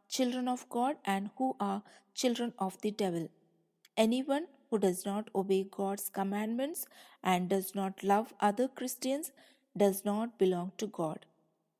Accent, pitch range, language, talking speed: Indian, 195-255 Hz, English, 140 wpm